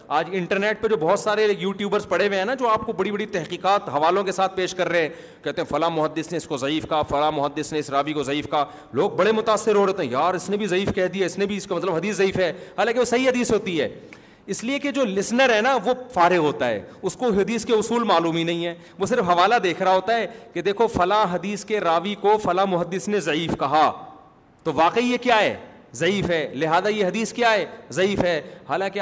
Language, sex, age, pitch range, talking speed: Urdu, male, 40-59, 175-225 Hz, 255 wpm